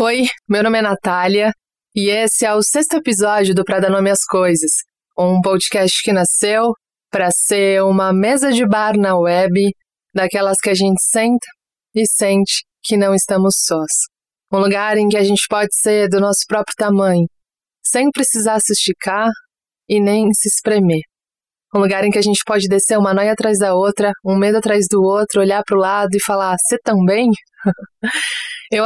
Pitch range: 190-215 Hz